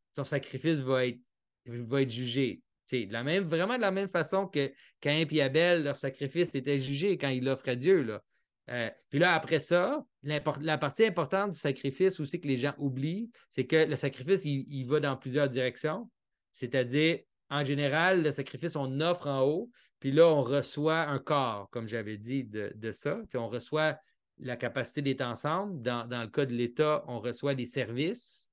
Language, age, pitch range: French, 30-49, 130-160 Hz